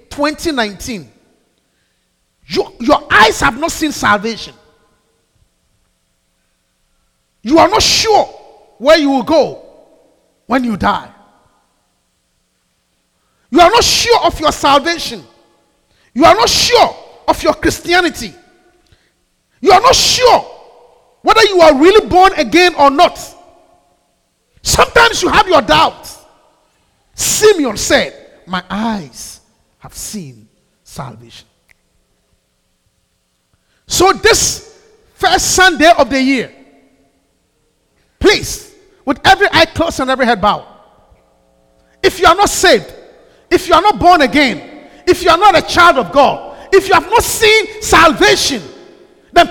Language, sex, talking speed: English, male, 120 wpm